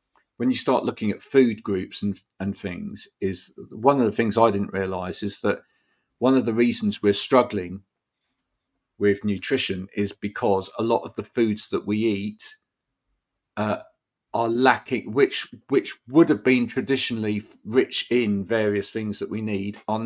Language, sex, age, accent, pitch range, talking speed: English, male, 40-59, British, 105-120 Hz, 165 wpm